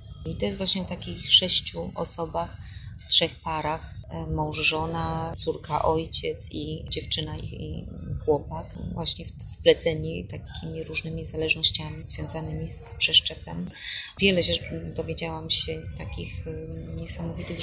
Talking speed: 110 wpm